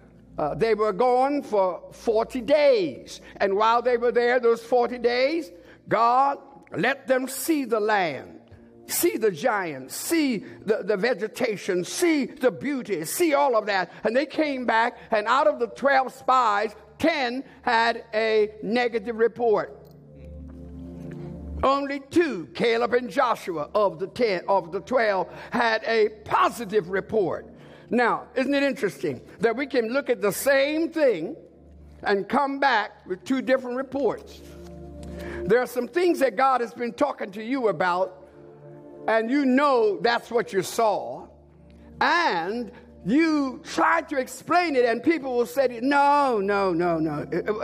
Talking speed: 150 wpm